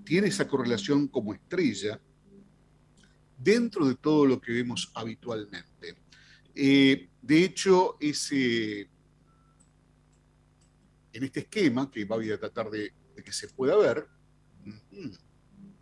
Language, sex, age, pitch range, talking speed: Spanish, male, 60-79, 125-170 Hz, 115 wpm